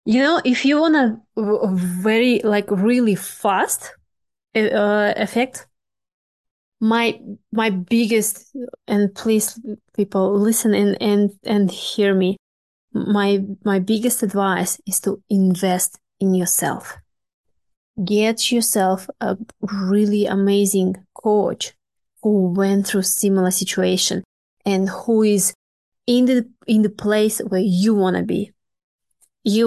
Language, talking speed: English, 115 wpm